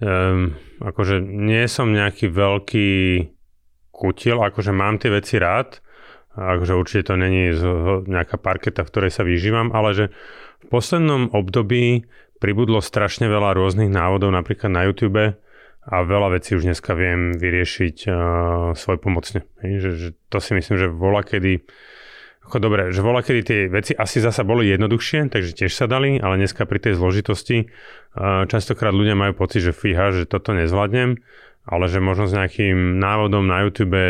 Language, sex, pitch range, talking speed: Slovak, male, 90-105 Hz, 150 wpm